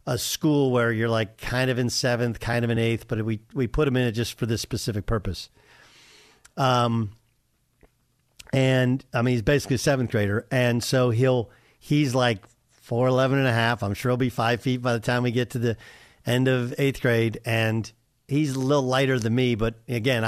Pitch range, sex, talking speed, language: 115-150 Hz, male, 205 wpm, English